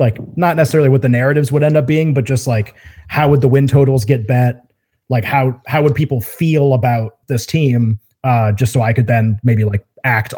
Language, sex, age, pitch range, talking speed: English, male, 30-49, 120-140 Hz, 220 wpm